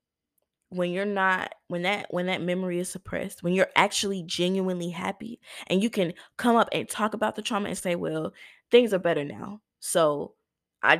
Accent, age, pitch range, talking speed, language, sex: American, 20-39, 175-235 Hz, 185 wpm, English, female